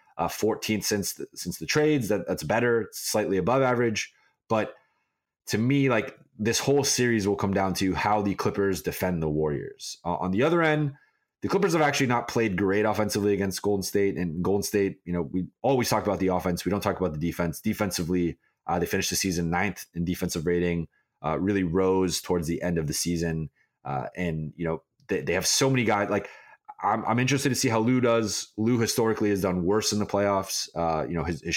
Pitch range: 90-110 Hz